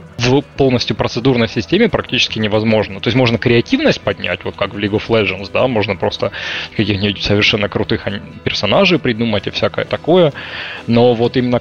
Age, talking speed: 20-39, 160 wpm